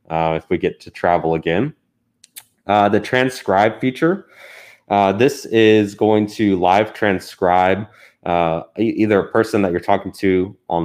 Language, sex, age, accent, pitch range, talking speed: English, male, 20-39, American, 85-105 Hz, 150 wpm